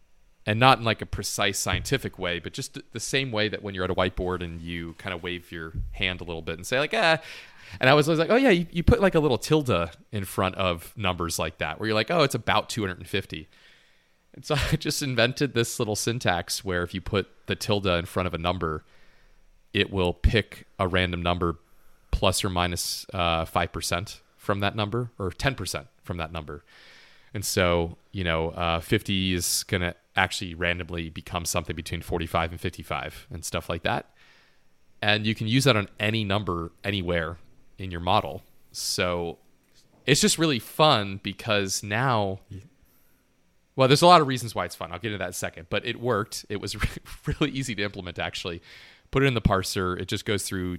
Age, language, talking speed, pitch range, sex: 30-49, English, 205 wpm, 85-110 Hz, male